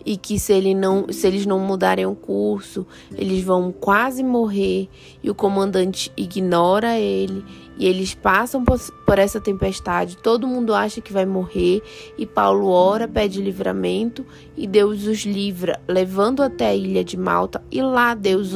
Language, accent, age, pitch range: Portuguese, Brazilian, 20-39, 185-230 Hz